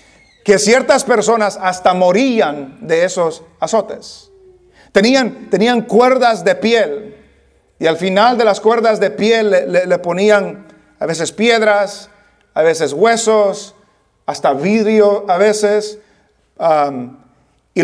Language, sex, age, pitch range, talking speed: English, male, 40-59, 170-215 Hz, 120 wpm